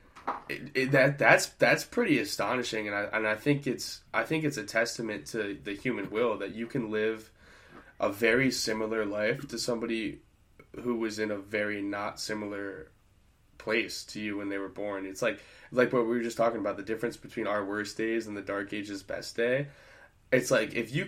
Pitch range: 100-120 Hz